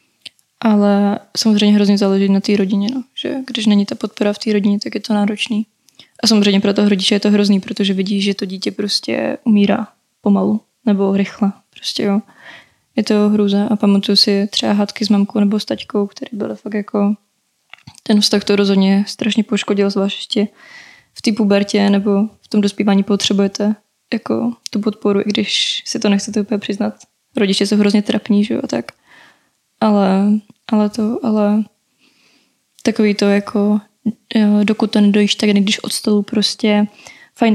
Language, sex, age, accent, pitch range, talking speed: Czech, female, 20-39, native, 205-220 Hz, 170 wpm